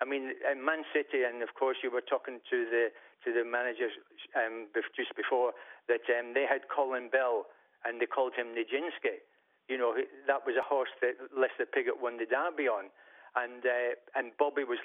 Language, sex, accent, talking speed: English, male, British, 195 wpm